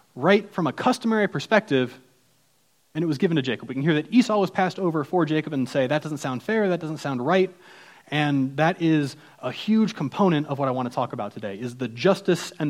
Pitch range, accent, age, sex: 145-195 Hz, American, 30-49, male